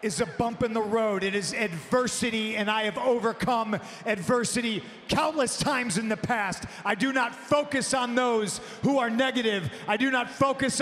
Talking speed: 175 wpm